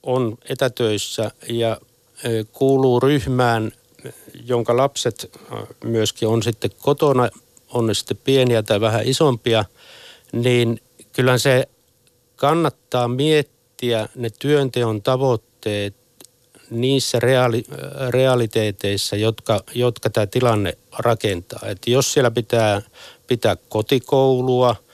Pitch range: 110-130 Hz